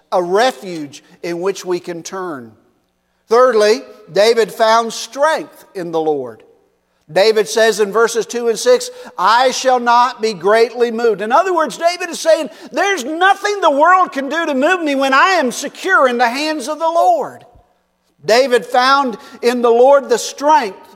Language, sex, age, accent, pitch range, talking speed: English, male, 50-69, American, 200-290 Hz, 170 wpm